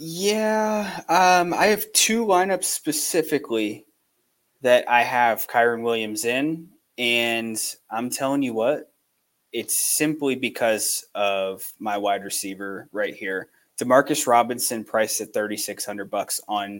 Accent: American